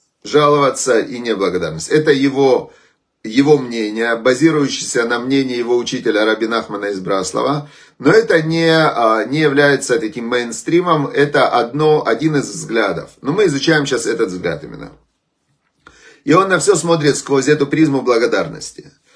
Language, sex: Russian, male